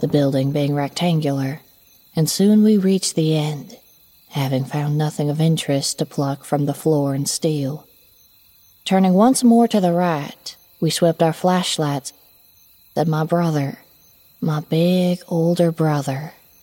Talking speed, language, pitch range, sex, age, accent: 140 wpm, English, 105-170 Hz, female, 20-39, American